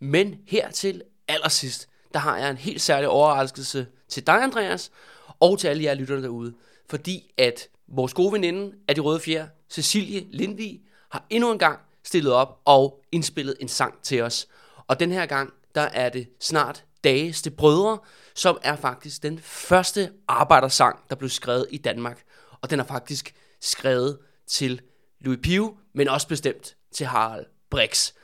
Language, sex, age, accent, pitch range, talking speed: Danish, male, 30-49, native, 135-180 Hz, 170 wpm